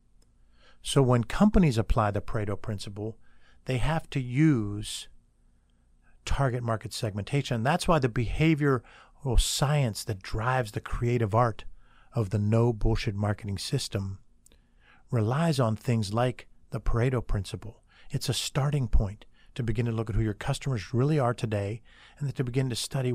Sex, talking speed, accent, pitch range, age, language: male, 150 wpm, American, 110-140 Hz, 50-69, English